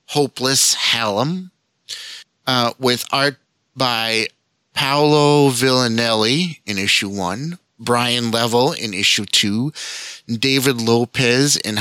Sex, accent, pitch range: male, American, 115-145 Hz